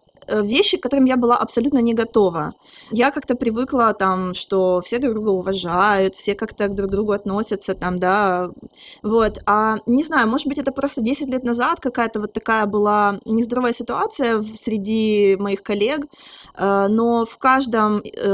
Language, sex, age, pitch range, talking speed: Ukrainian, female, 20-39, 205-255 Hz, 160 wpm